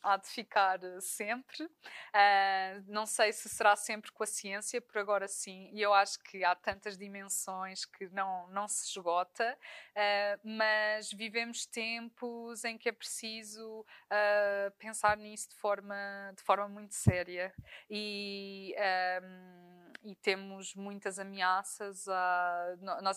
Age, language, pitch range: 20-39, Portuguese, 195-235 Hz